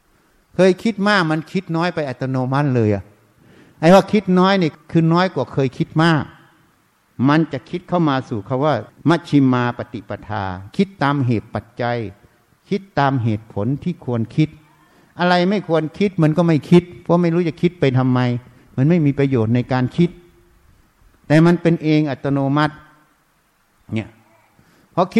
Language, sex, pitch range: Thai, male, 125-175 Hz